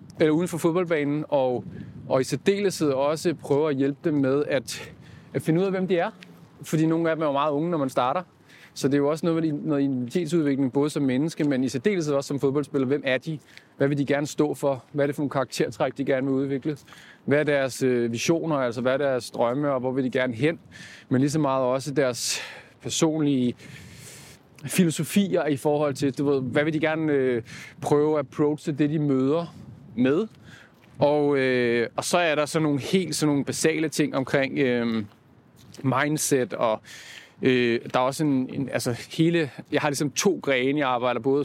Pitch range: 130-155 Hz